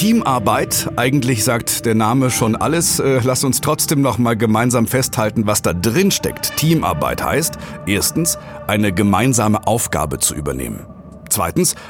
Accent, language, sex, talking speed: German, German, male, 130 wpm